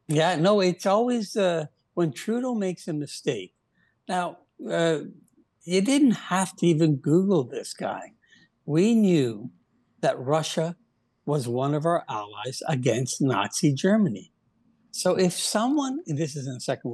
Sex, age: male, 60-79